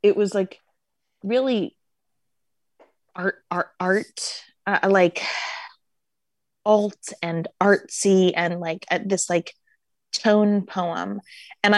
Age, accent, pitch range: 20-39, American, 165-205 Hz